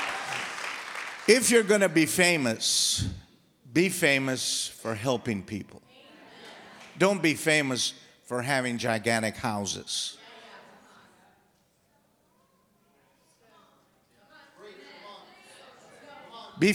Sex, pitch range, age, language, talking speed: male, 155-225 Hz, 50-69, English, 70 wpm